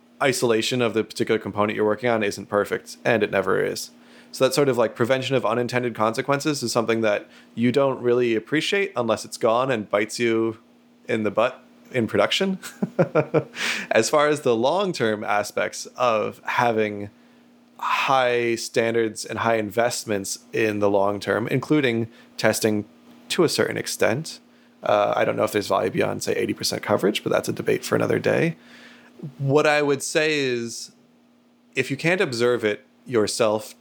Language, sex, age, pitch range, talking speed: English, male, 20-39, 110-135 Hz, 165 wpm